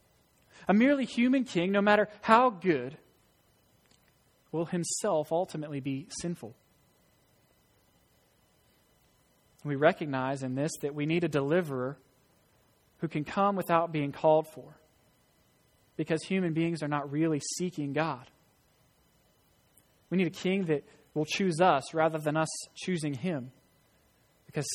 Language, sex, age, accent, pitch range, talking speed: English, male, 20-39, American, 140-180 Hz, 125 wpm